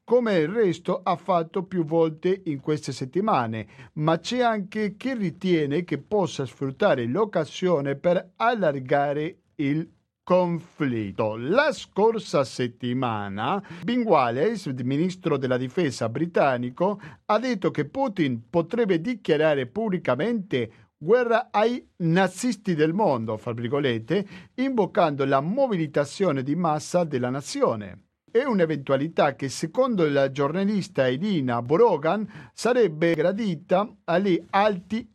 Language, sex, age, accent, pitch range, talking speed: Italian, male, 50-69, native, 145-200 Hz, 105 wpm